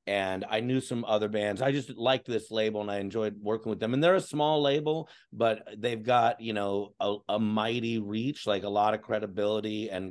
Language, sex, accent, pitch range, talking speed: English, male, American, 105-125 Hz, 220 wpm